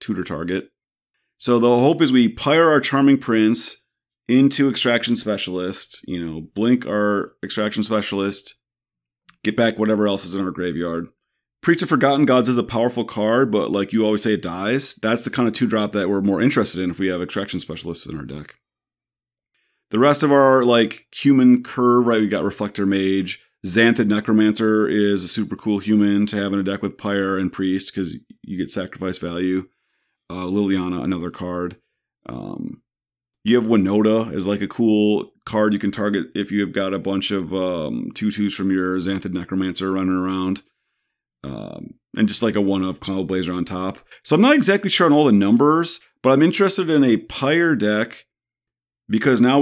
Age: 30-49